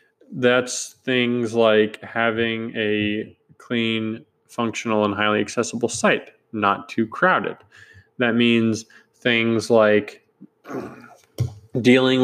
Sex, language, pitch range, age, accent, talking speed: male, English, 110-150 Hz, 20-39, American, 95 wpm